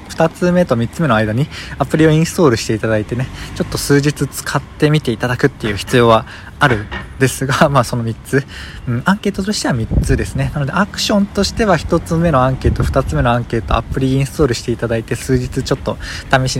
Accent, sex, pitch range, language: native, male, 110-135 Hz, Japanese